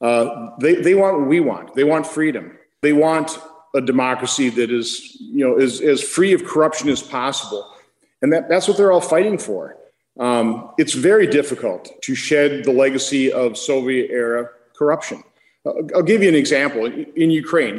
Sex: male